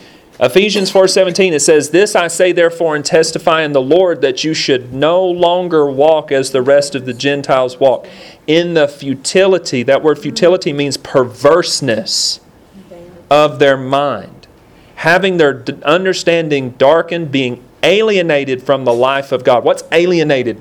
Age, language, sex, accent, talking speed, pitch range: 40-59, English, male, American, 145 wpm, 135-170 Hz